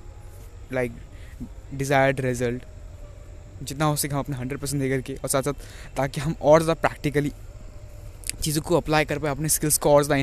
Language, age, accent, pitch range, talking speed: Hindi, 20-39, native, 115-170 Hz, 175 wpm